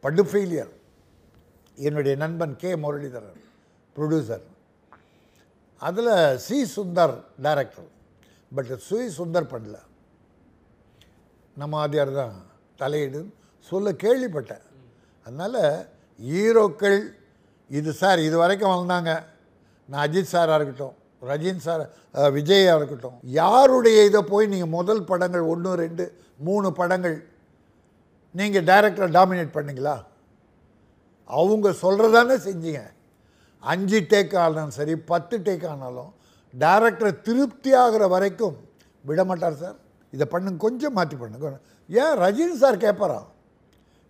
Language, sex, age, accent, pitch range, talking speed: Tamil, male, 60-79, native, 140-200 Hz, 100 wpm